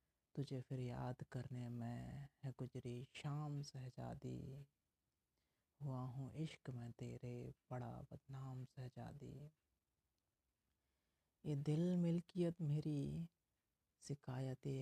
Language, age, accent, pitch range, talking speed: Hindi, 40-59, native, 125-150 Hz, 90 wpm